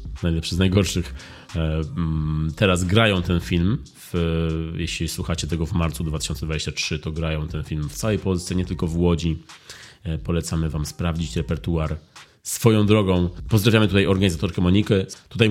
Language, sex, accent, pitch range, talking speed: Polish, male, native, 85-105 Hz, 135 wpm